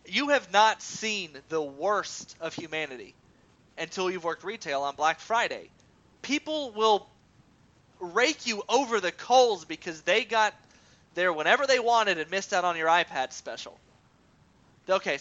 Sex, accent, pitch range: male, American, 150-215 Hz